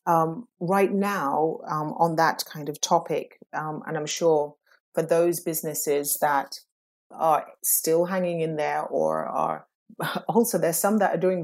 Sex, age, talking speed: female, 30-49, 155 wpm